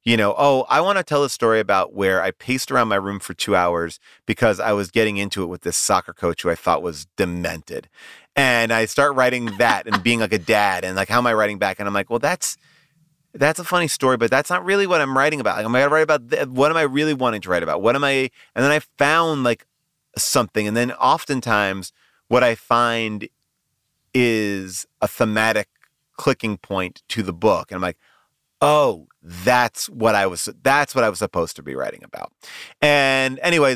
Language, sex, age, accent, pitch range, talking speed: English, male, 30-49, American, 100-140 Hz, 220 wpm